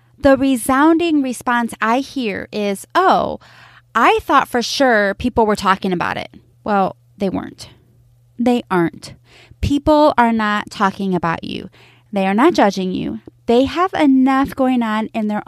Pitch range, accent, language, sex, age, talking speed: 170-280 Hz, American, English, female, 20-39, 150 wpm